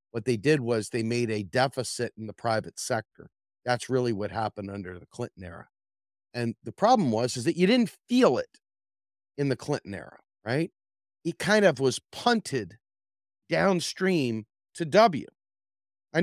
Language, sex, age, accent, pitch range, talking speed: English, male, 40-59, American, 105-160 Hz, 165 wpm